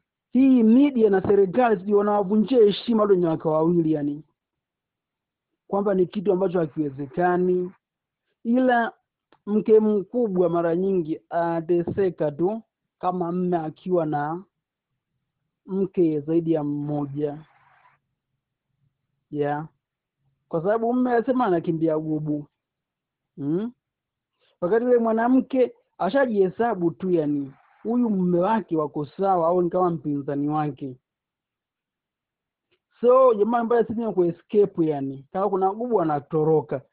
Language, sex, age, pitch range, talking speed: Swahili, male, 50-69, 155-210 Hz, 105 wpm